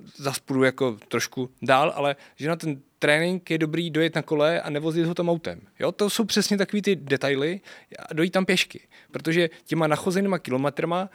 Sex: male